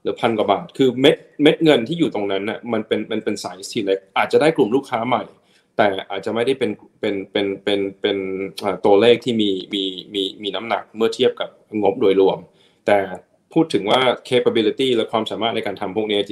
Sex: male